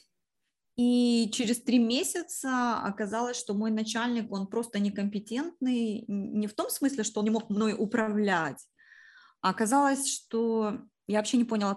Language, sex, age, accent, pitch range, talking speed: Ukrainian, female, 20-39, native, 195-235 Hz, 140 wpm